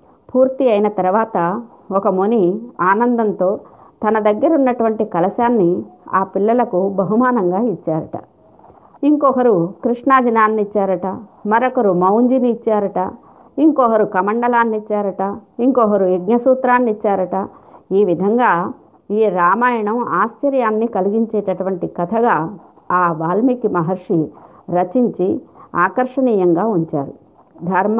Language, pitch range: Telugu, 185-240 Hz